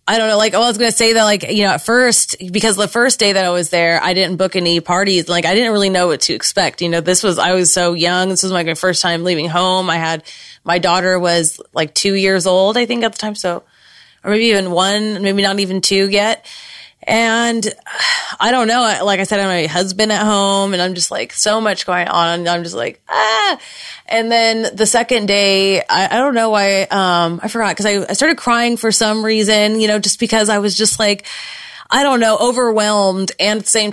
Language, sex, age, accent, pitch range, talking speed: English, female, 20-39, American, 185-225 Hz, 245 wpm